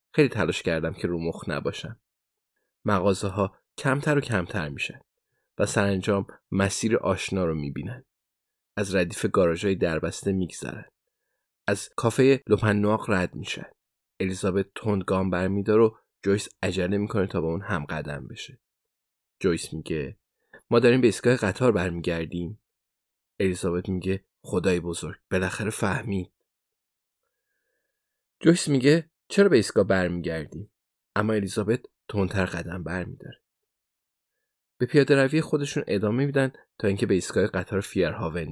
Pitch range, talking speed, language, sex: 95-120 Hz, 130 wpm, Persian, male